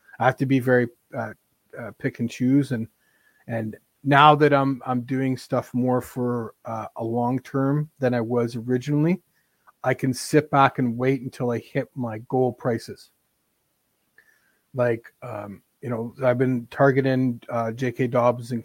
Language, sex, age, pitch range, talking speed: English, male, 30-49, 120-130 Hz, 165 wpm